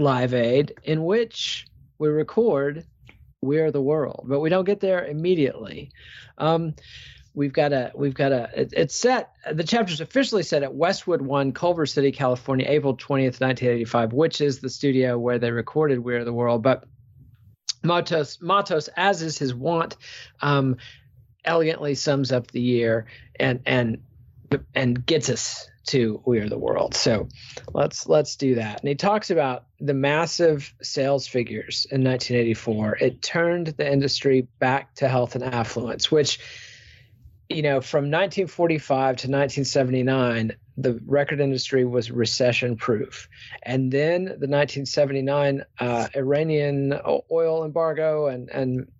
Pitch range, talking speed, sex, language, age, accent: 125-150 Hz, 145 wpm, male, English, 40-59, American